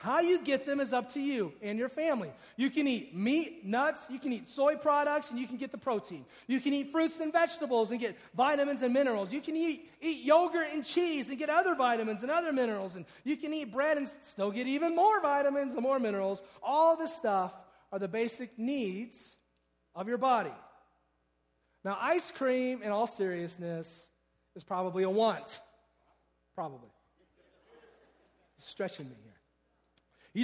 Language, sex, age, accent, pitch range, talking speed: English, male, 40-59, American, 195-295 Hz, 180 wpm